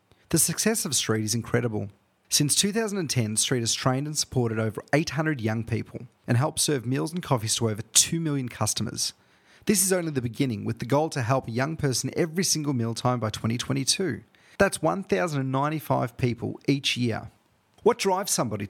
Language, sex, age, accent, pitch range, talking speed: English, male, 30-49, Australian, 115-150 Hz, 175 wpm